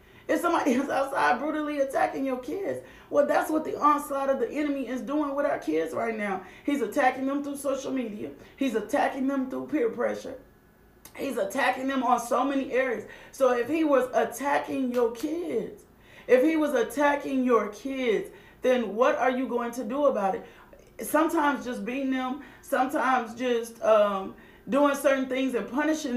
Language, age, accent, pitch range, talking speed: English, 30-49, American, 240-285 Hz, 175 wpm